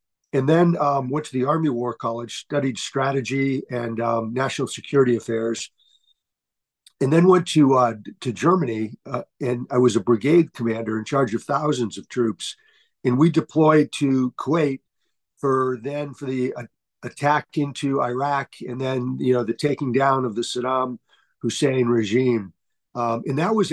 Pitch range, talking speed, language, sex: 125-145 Hz, 160 wpm, English, male